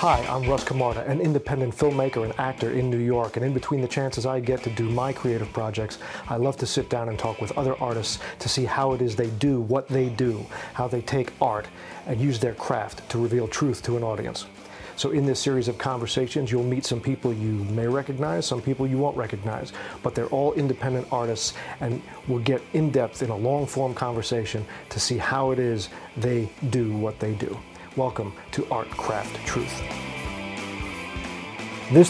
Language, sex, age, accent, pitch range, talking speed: English, male, 40-59, American, 115-140 Hz, 195 wpm